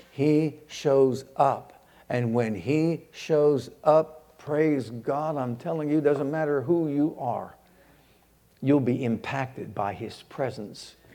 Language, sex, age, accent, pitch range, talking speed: English, male, 60-79, American, 130-155 Hz, 130 wpm